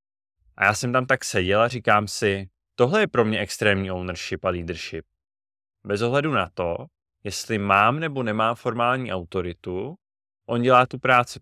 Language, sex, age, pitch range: Czech, male, 20-39, 90-115 Hz